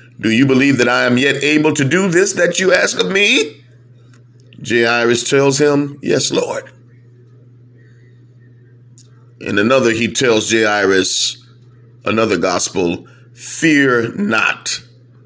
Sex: male